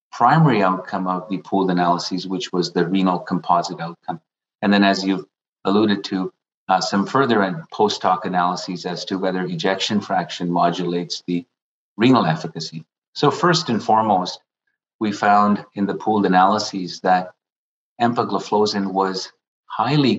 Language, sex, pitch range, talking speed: English, male, 95-105 Hz, 135 wpm